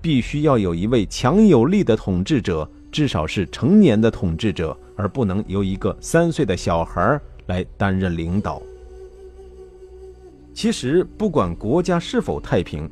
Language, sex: Chinese, male